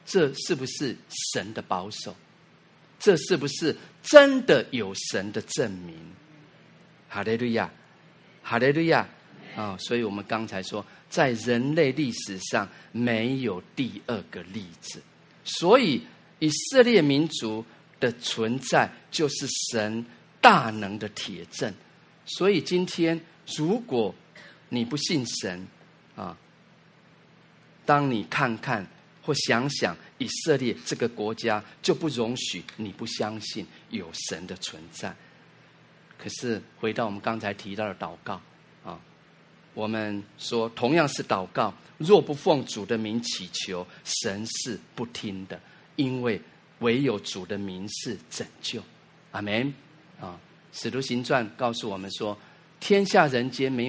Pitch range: 105-155 Hz